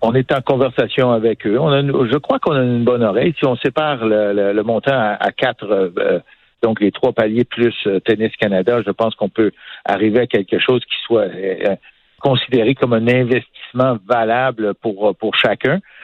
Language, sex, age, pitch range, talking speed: French, male, 60-79, 105-130 Hz, 185 wpm